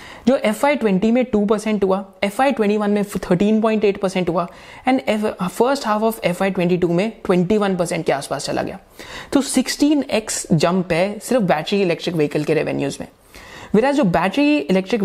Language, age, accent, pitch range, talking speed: Hindi, 30-49, native, 175-235 Hz, 150 wpm